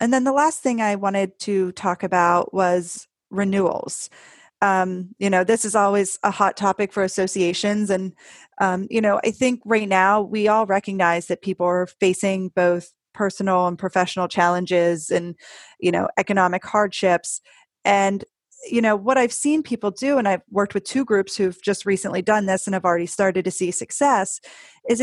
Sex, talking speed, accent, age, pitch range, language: female, 180 wpm, American, 30-49, 180-215 Hz, English